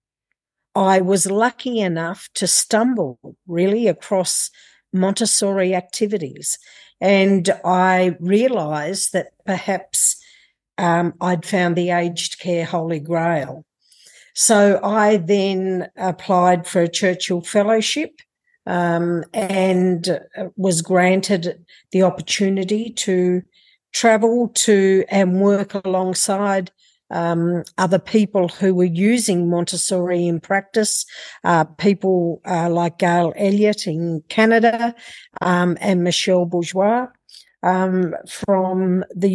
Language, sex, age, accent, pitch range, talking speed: Swedish, female, 50-69, Australian, 180-210 Hz, 100 wpm